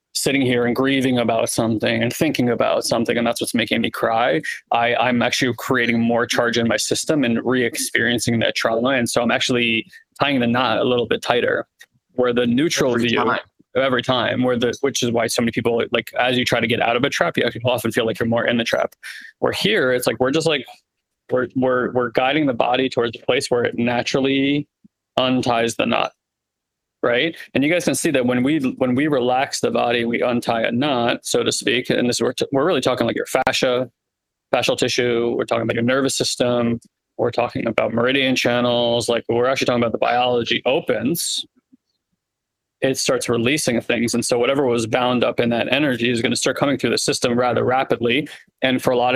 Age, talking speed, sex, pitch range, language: 20-39, 215 wpm, male, 120-130 Hz, English